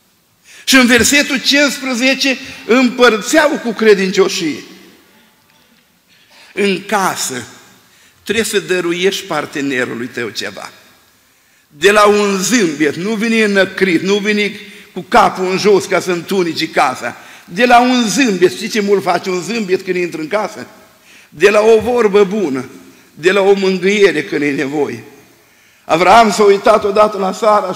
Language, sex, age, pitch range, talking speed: Romanian, male, 50-69, 185-235 Hz, 140 wpm